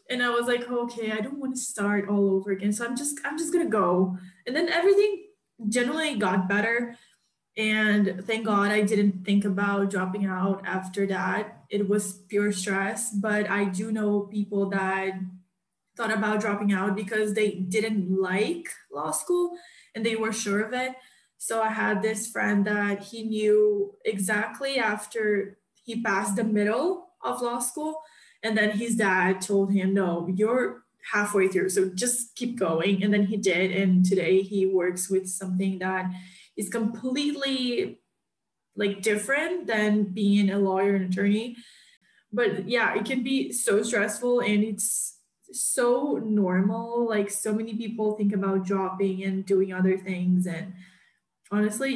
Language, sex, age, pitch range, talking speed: English, female, 10-29, 190-230 Hz, 160 wpm